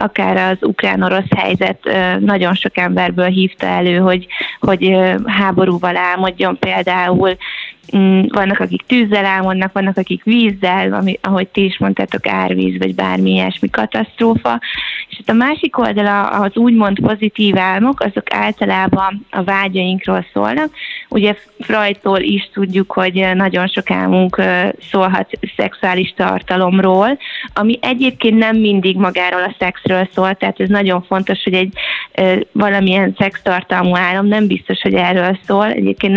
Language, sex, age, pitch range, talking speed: Hungarian, female, 20-39, 180-200 Hz, 125 wpm